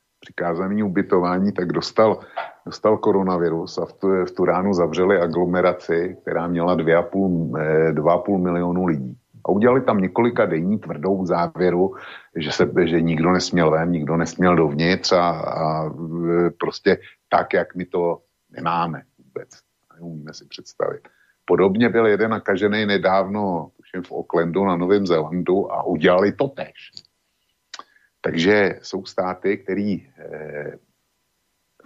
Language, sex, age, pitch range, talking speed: Slovak, male, 50-69, 85-95 Hz, 125 wpm